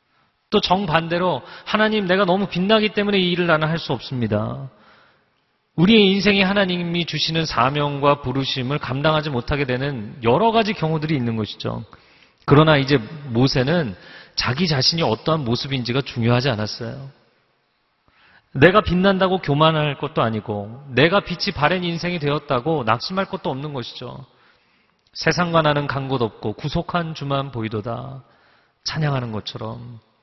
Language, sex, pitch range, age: Korean, male, 120-175 Hz, 40-59